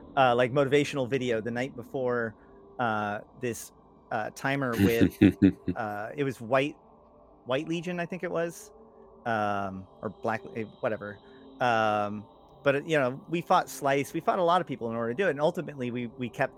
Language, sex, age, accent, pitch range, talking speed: English, male, 40-59, American, 110-135 Hz, 175 wpm